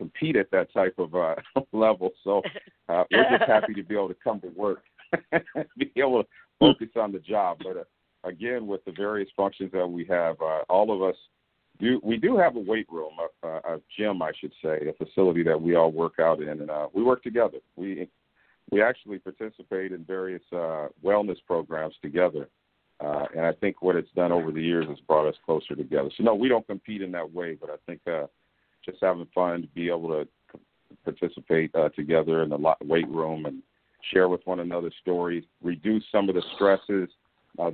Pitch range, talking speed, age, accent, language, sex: 80-95 Hz, 205 wpm, 50-69, American, English, male